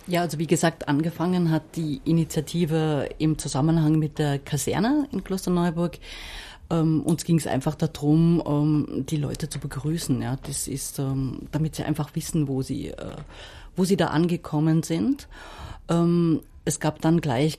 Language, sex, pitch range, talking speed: English, female, 150-170 Hz, 140 wpm